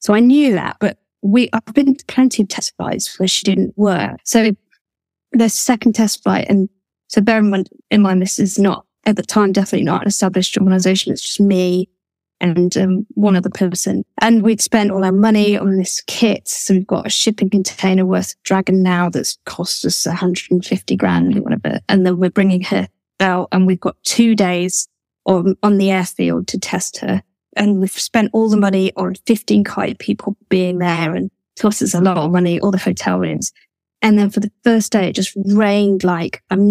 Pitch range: 185-220 Hz